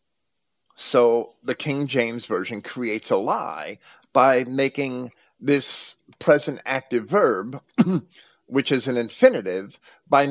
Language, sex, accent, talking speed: English, male, American, 110 wpm